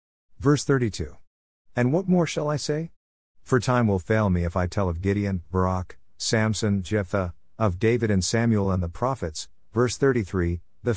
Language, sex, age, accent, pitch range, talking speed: English, male, 50-69, American, 90-120 Hz, 170 wpm